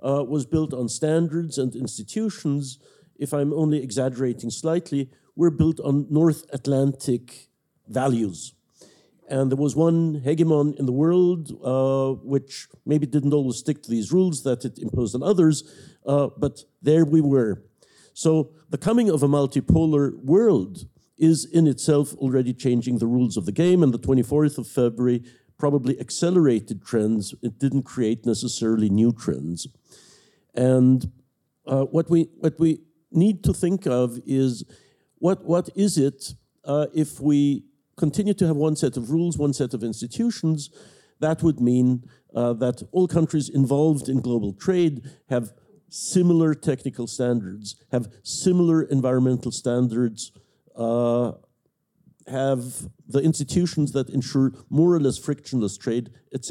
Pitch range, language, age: 125-160 Hz, English, 50-69